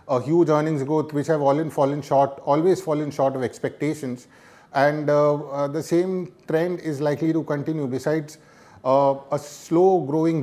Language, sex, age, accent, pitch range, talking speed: English, male, 30-49, Indian, 135-165 Hz, 175 wpm